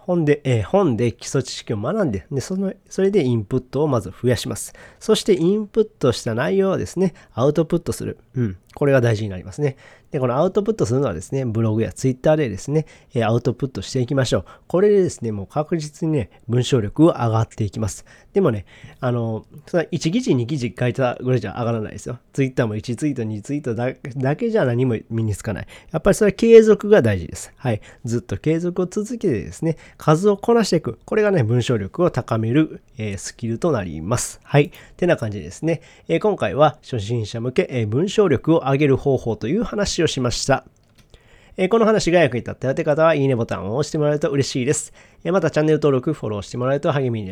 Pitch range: 115-165 Hz